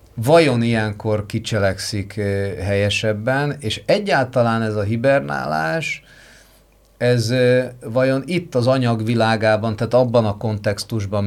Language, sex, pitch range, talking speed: Hungarian, male, 100-120 Hz, 95 wpm